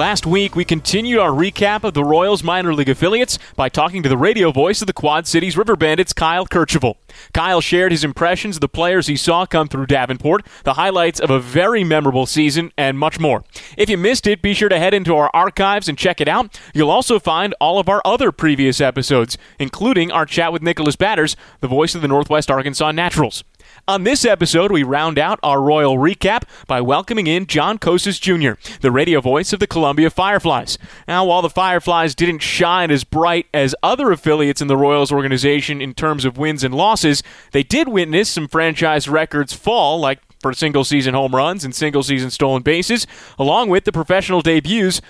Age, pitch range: 30-49, 145-190 Hz